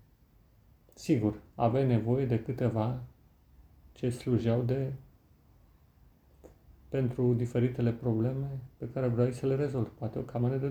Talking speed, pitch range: 120 wpm, 110-135 Hz